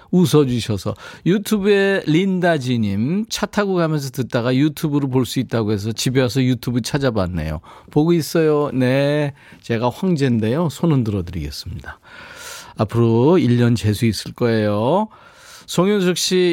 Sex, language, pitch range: male, Korean, 115-170 Hz